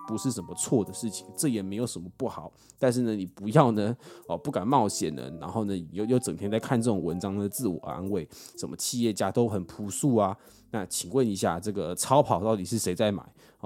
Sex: male